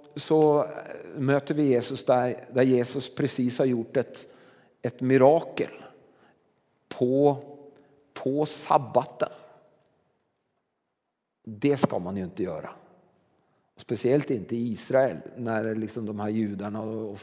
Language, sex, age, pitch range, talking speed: Swedish, male, 40-59, 115-145 Hz, 110 wpm